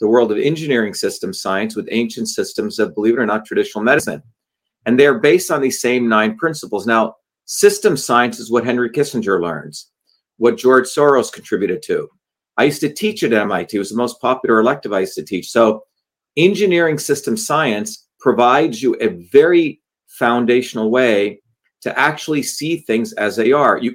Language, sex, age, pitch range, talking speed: English, male, 40-59, 115-155 Hz, 180 wpm